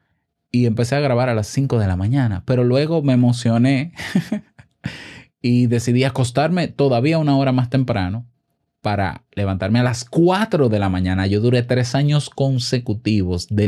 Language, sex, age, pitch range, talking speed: Spanish, male, 20-39, 105-140 Hz, 160 wpm